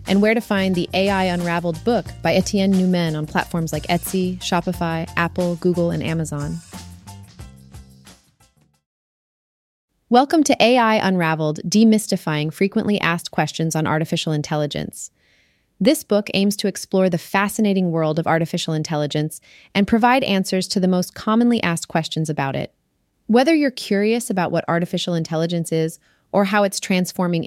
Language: English